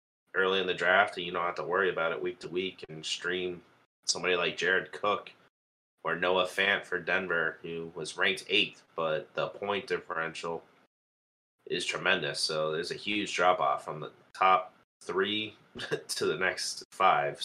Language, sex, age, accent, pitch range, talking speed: English, male, 30-49, American, 80-95 Hz, 170 wpm